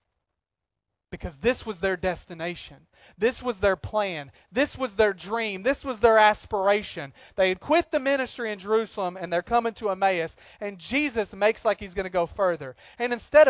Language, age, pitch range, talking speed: English, 30-49, 150-220 Hz, 180 wpm